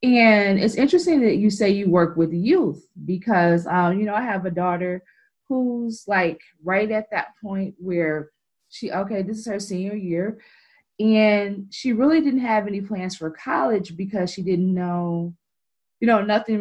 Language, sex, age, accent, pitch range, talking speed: English, female, 20-39, American, 170-225 Hz, 175 wpm